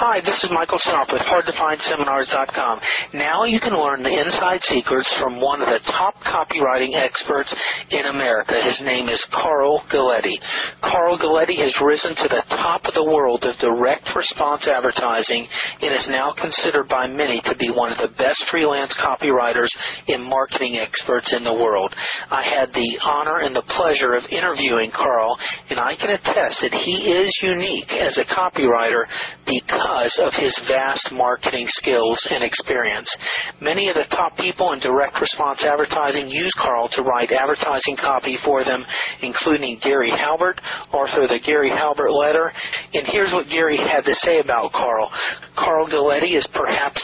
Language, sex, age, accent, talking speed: English, male, 40-59, American, 165 wpm